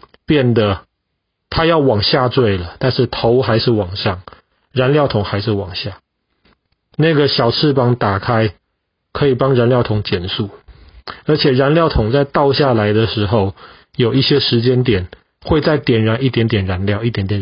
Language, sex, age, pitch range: Chinese, male, 30-49, 100-135 Hz